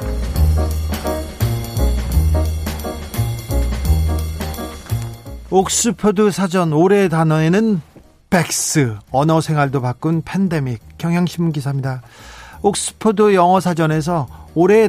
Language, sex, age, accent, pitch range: Korean, male, 40-59, native, 120-180 Hz